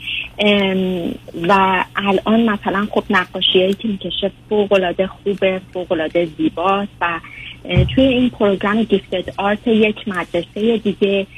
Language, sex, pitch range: Persian, female, 165-205 Hz